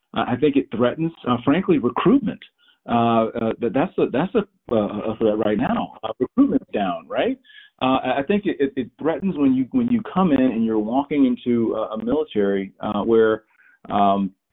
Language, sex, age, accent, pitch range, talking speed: English, male, 40-59, American, 105-130 Hz, 180 wpm